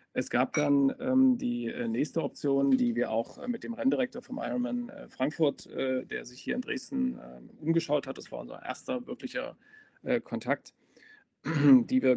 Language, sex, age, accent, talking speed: German, male, 40-59, German, 185 wpm